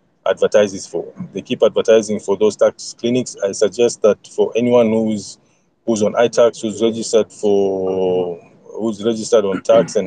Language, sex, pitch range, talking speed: English, male, 105-130 Hz, 160 wpm